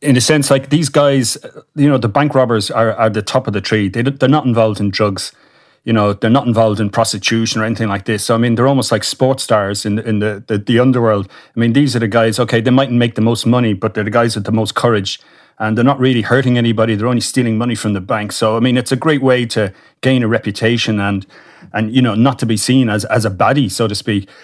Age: 30-49